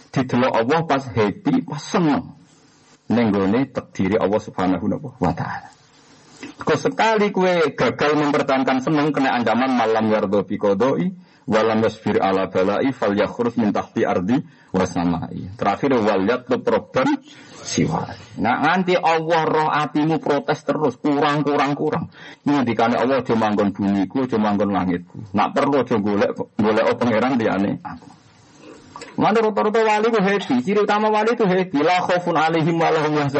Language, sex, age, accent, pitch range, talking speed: Indonesian, male, 50-69, native, 125-195 Hz, 125 wpm